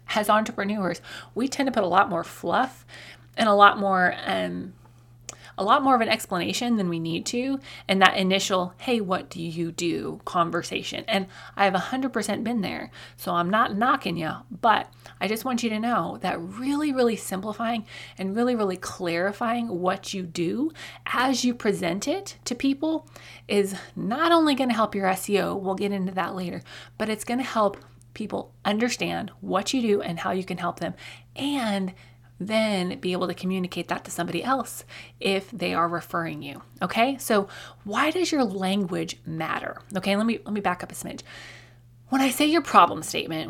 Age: 20-39